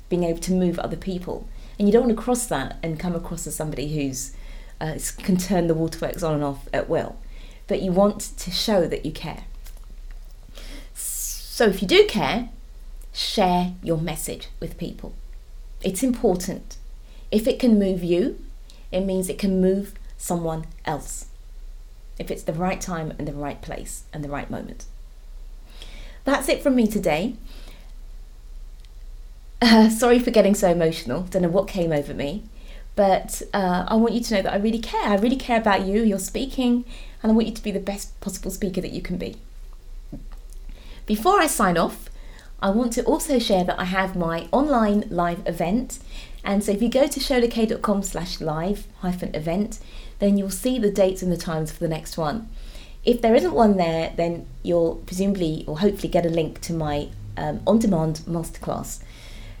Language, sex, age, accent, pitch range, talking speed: English, female, 30-49, British, 165-220 Hz, 180 wpm